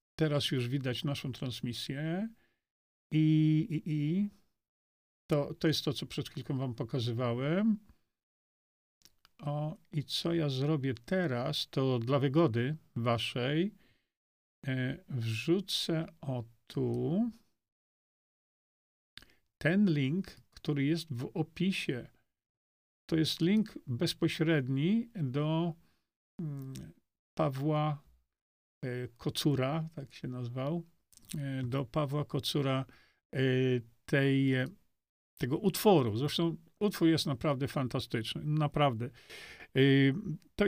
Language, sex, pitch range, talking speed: Polish, male, 125-160 Hz, 90 wpm